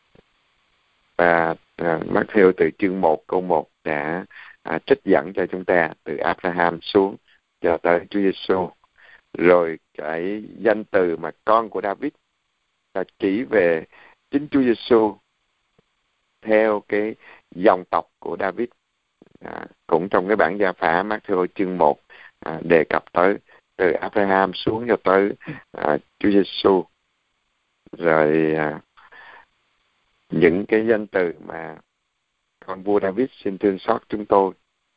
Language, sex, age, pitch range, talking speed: Vietnamese, male, 60-79, 85-100 Hz, 135 wpm